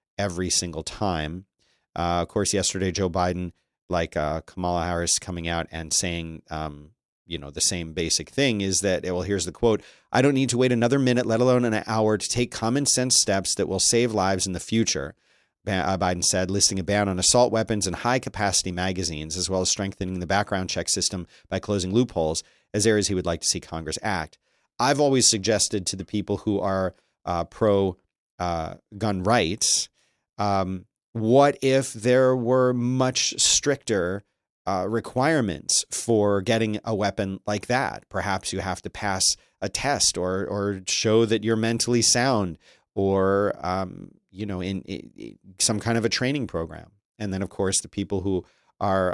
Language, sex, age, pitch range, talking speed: English, male, 40-59, 90-115 Hz, 180 wpm